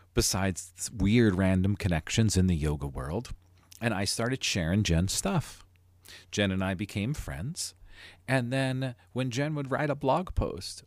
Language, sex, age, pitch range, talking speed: English, male, 40-59, 90-145 Hz, 155 wpm